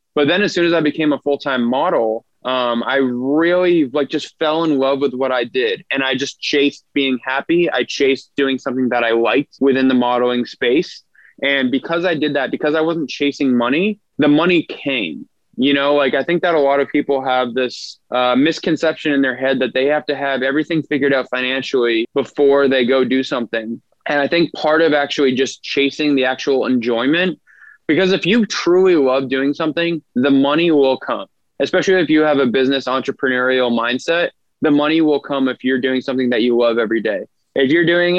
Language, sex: English, male